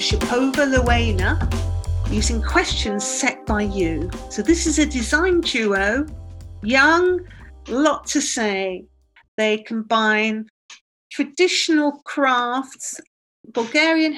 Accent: British